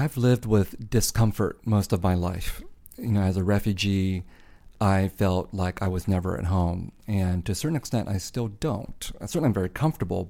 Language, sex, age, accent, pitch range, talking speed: English, male, 40-59, American, 95-115 Hz, 200 wpm